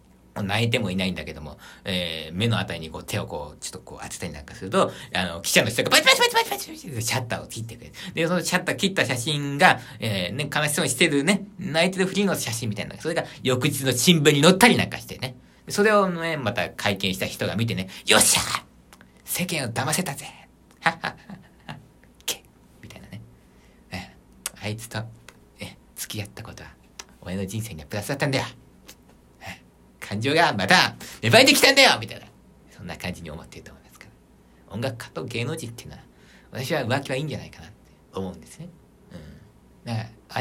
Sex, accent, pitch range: male, native, 95-155 Hz